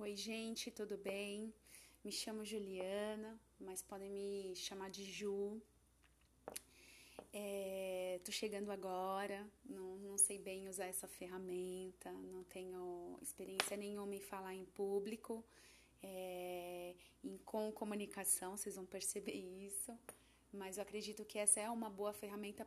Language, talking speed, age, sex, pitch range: Portuguese, 120 wpm, 20-39, female, 190-215 Hz